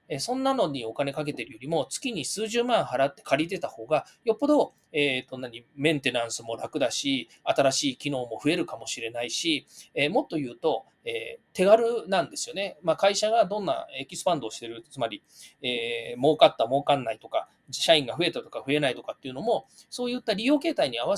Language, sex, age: Japanese, male, 20-39